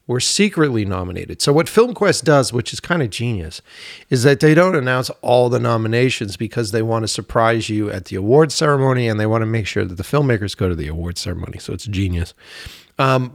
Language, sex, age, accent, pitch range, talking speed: English, male, 40-59, American, 110-140 Hz, 215 wpm